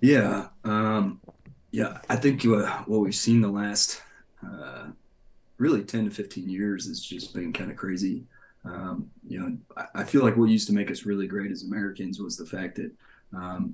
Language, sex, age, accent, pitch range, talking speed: English, male, 20-39, American, 100-110 Hz, 190 wpm